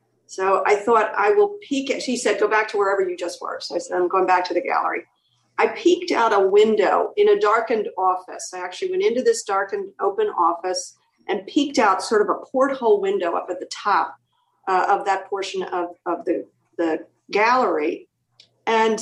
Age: 50-69